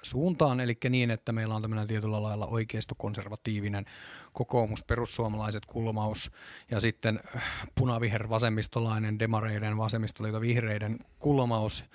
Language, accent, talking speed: Finnish, native, 100 wpm